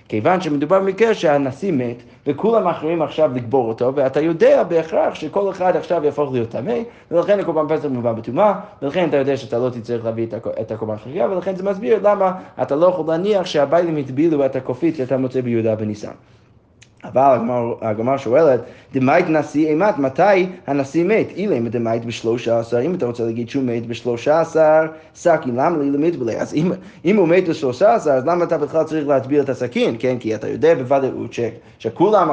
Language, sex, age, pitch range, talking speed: Hebrew, male, 20-39, 130-175 Hz, 180 wpm